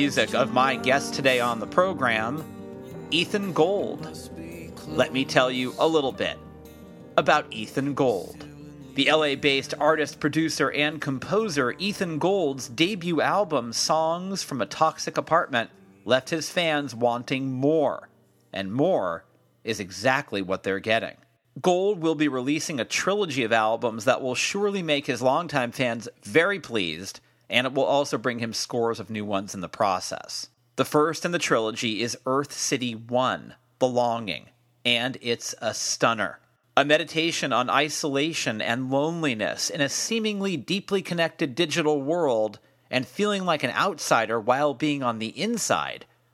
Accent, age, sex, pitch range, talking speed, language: American, 40-59, male, 120-160 Hz, 150 wpm, English